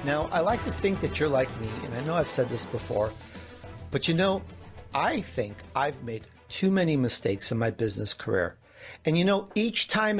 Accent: American